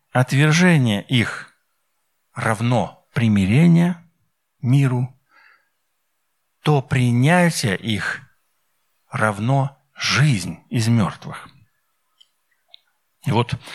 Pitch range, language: 115-145 Hz, Russian